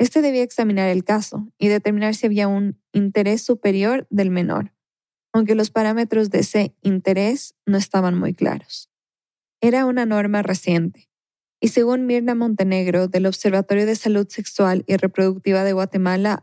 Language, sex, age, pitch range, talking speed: Spanish, female, 20-39, 190-220 Hz, 150 wpm